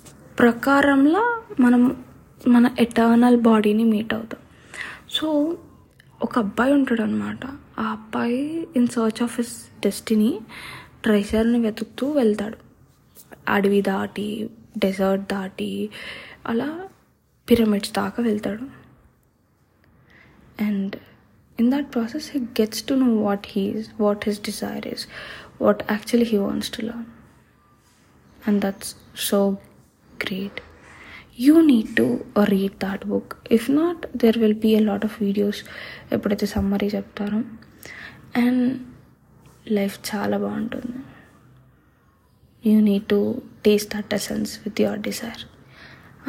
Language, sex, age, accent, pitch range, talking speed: Telugu, female, 20-39, native, 205-245 Hz, 110 wpm